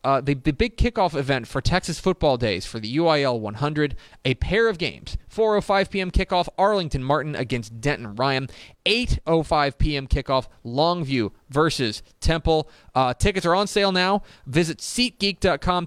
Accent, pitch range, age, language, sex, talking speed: American, 115-155 Hz, 30-49, English, male, 150 wpm